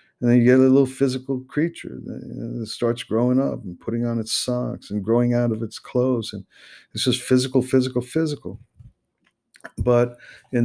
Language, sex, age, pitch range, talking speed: English, male, 50-69, 105-125 Hz, 175 wpm